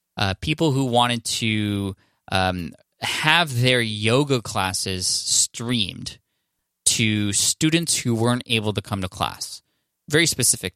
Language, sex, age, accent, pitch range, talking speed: English, male, 20-39, American, 100-120 Hz, 125 wpm